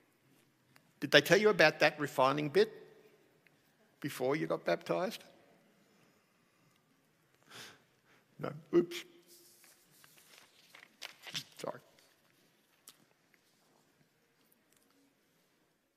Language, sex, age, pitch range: English, male, 60-79, 120-155 Hz